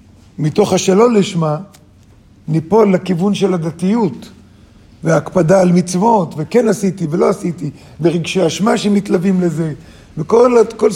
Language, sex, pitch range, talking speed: Hebrew, male, 145-205 Hz, 105 wpm